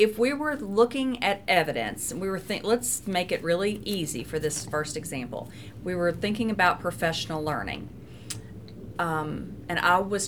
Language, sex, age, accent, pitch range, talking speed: English, female, 40-59, American, 155-200 Hz, 170 wpm